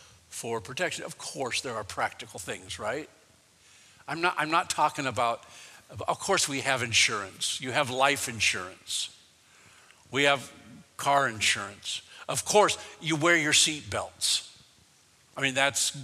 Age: 60-79